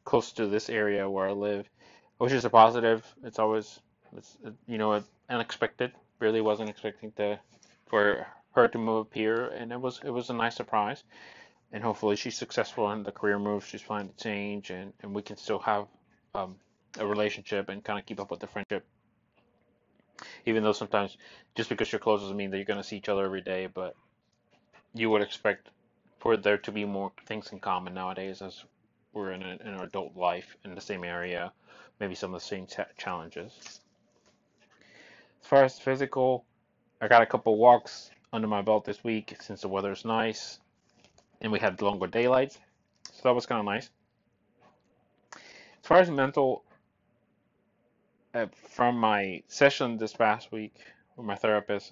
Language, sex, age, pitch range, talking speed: English, male, 20-39, 100-120 Hz, 180 wpm